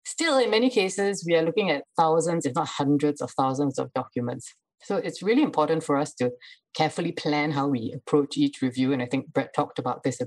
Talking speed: 220 wpm